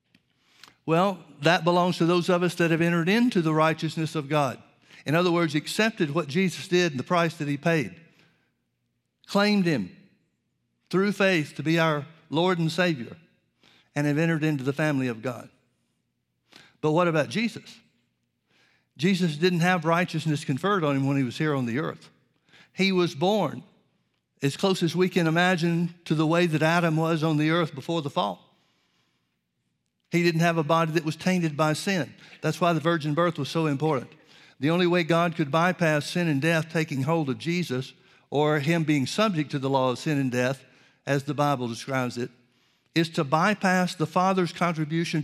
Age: 60-79